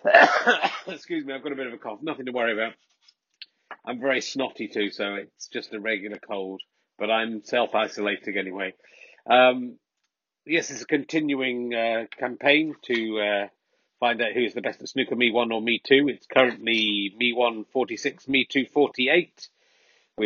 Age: 40-59